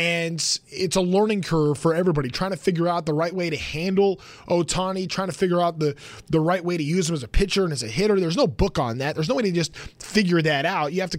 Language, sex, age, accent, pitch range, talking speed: English, male, 20-39, American, 155-200 Hz, 275 wpm